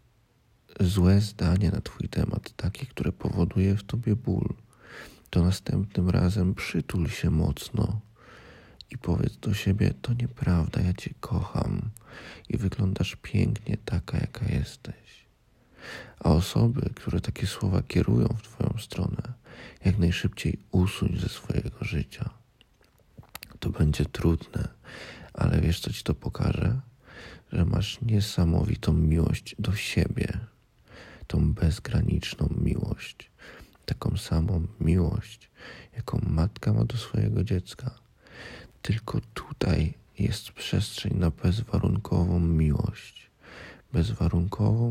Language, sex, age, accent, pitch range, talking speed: Polish, male, 40-59, native, 85-110 Hz, 110 wpm